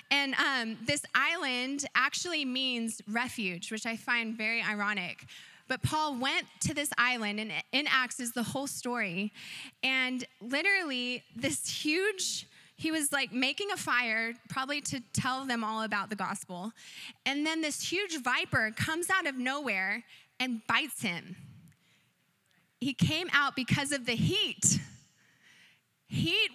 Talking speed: 140 wpm